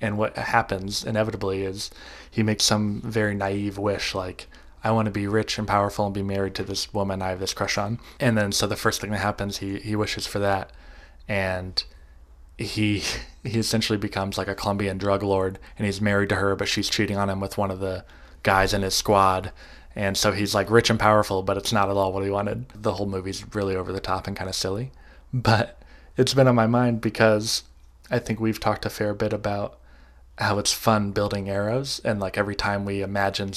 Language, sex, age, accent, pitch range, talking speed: English, male, 20-39, American, 95-110 Hz, 220 wpm